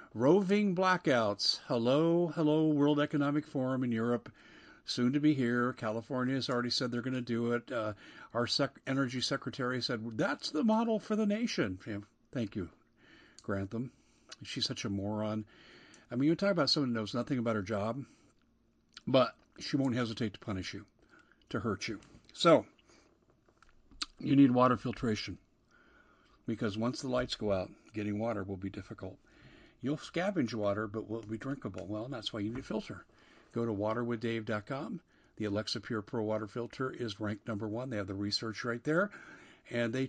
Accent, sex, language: American, male, English